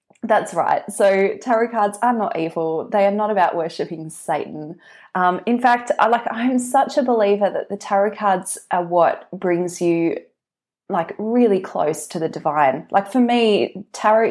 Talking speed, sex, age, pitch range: 170 wpm, female, 20-39, 170-220 Hz